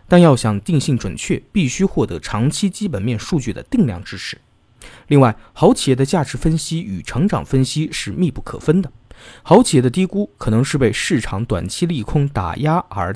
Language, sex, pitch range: Chinese, male, 105-150 Hz